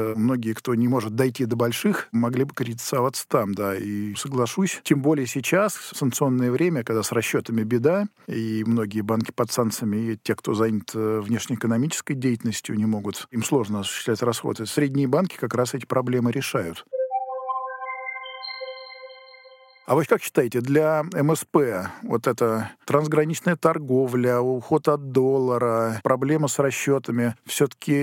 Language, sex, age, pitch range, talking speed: Russian, male, 50-69, 115-150 Hz, 140 wpm